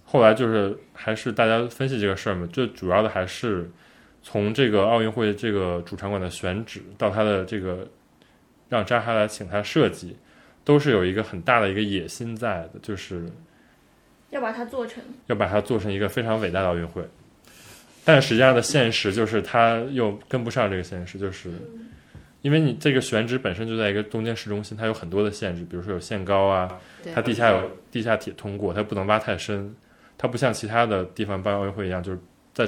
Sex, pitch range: male, 95-110 Hz